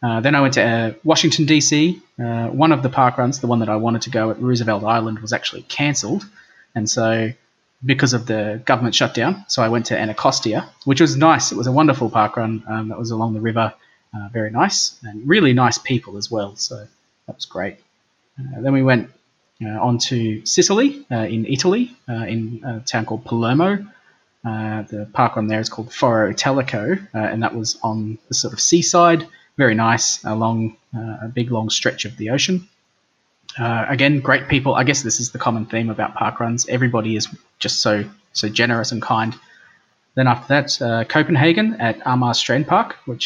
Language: English